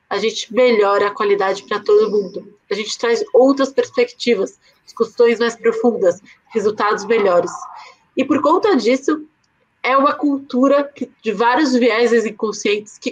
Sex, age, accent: female, 20-39, Brazilian